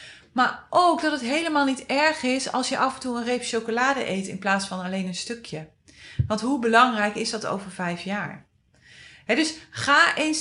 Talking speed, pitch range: 195 wpm, 200-275 Hz